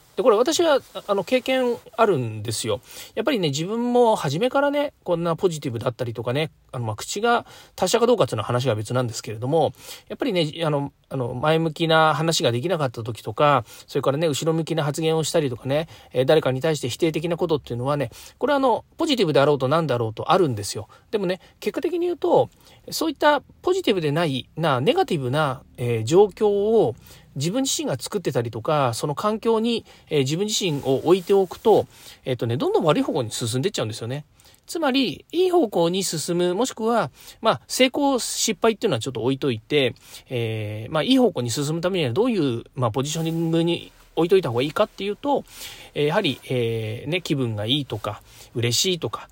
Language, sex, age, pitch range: Japanese, male, 40-59, 125-200 Hz